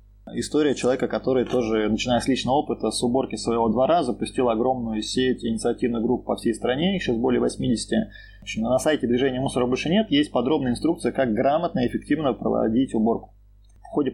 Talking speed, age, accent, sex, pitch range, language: 185 wpm, 20-39, native, male, 115-135 Hz, Russian